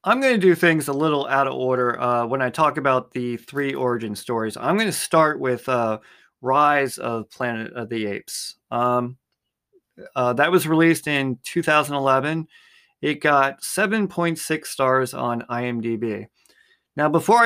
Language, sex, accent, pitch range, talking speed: English, male, American, 125-155 Hz, 155 wpm